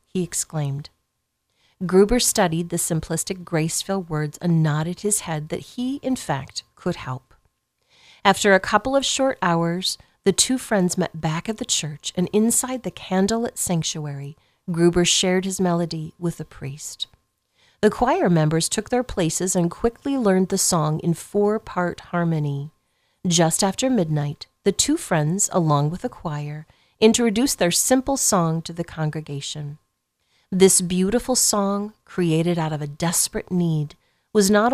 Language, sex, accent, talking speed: English, female, American, 150 wpm